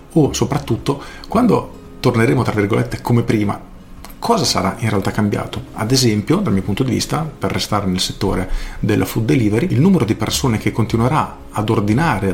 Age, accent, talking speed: 40-59, native, 170 wpm